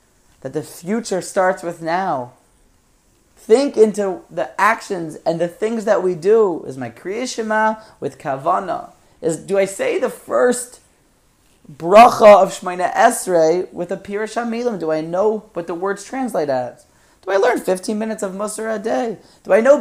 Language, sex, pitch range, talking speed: English, male, 180-230 Hz, 165 wpm